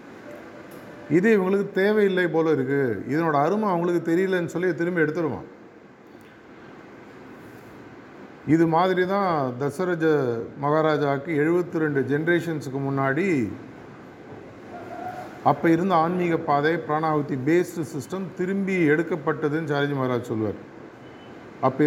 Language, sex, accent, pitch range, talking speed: Tamil, male, native, 140-170 Hz, 95 wpm